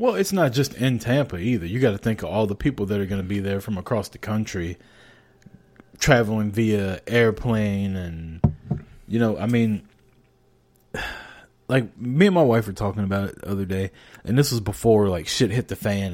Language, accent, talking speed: English, American, 200 wpm